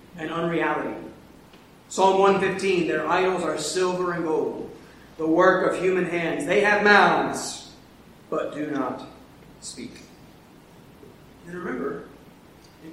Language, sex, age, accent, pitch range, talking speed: English, male, 40-59, American, 175-220 Hz, 115 wpm